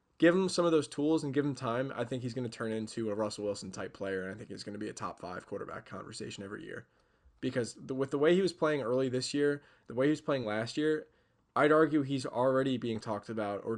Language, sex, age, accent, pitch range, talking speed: English, male, 20-39, American, 110-140 Hz, 260 wpm